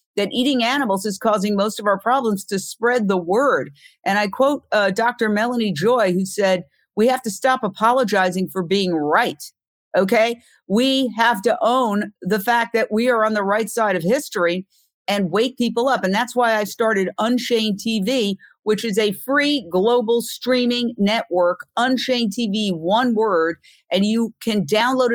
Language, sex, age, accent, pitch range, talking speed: English, female, 50-69, American, 195-245 Hz, 170 wpm